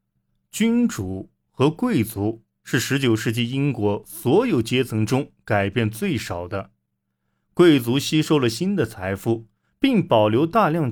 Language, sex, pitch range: Chinese, male, 105-155 Hz